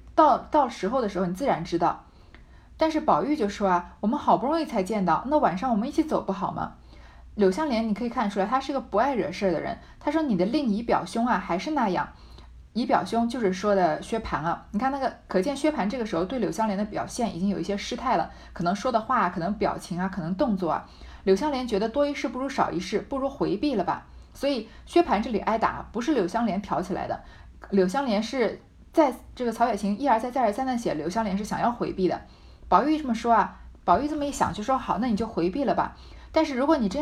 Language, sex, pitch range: Chinese, female, 190-275 Hz